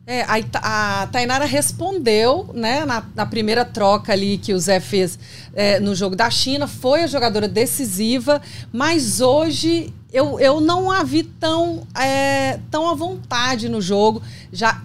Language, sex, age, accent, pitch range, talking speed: Portuguese, female, 40-59, Brazilian, 215-285 Hz, 160 wpm